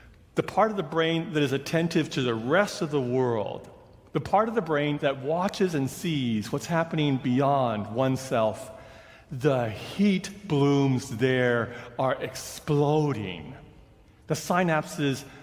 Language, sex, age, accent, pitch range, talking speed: English, male, 40-59, American, 115-145 Hz, 135 wpm